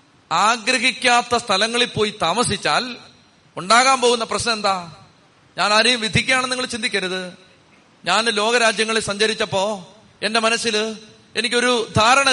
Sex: male